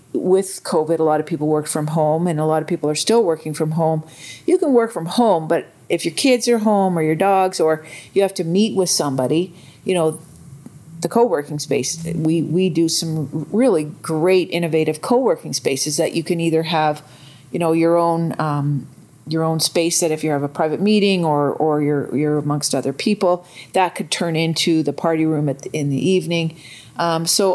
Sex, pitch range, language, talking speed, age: female, 150-175 Hz, English, 205 wpm, 40-59